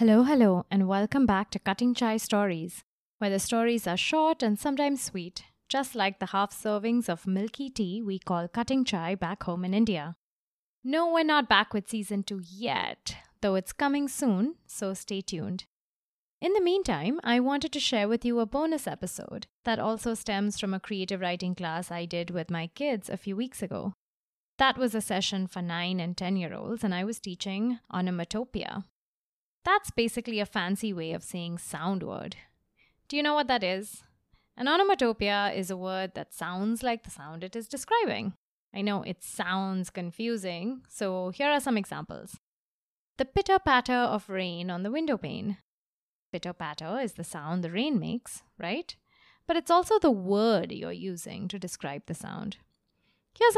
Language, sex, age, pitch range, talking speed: English, female, 20-39, 185-240 Hz, 175 wpm